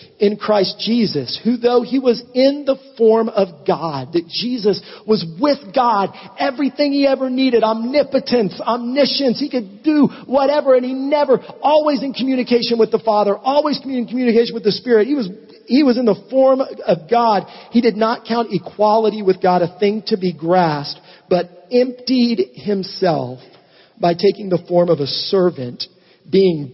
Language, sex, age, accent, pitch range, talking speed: English, male, 40-59, American, 175-240 Hz, 165 wpm